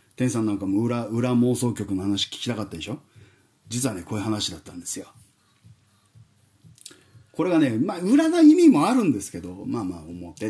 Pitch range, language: 110-175 Hz, Japanese